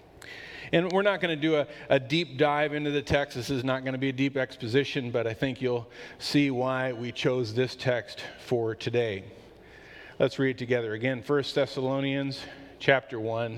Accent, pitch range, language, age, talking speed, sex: American, 125-155 Hz, English, 40-59, 190 wpm, male